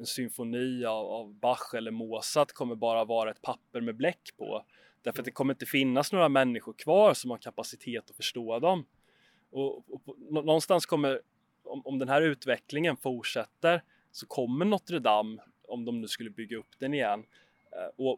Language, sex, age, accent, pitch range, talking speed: Swedish, male, 20-39, native, 115-135 Hz, 170 wpm